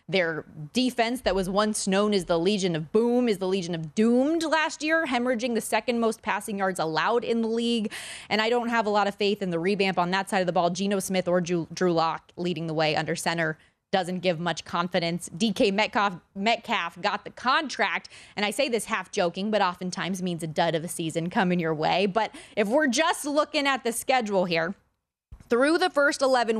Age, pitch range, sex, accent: 20-39, 185-250 Hz, female, American